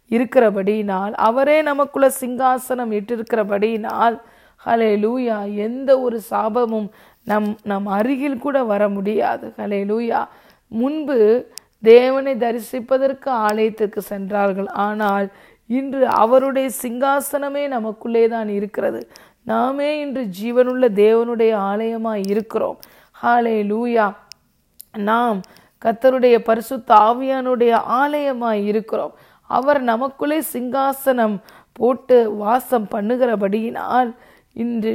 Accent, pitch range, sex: native, 210-255 Hz, female